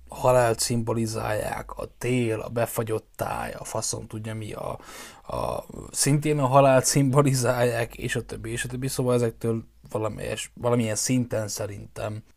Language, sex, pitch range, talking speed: Hungarian, male, 110-130 Hz, 140 wpm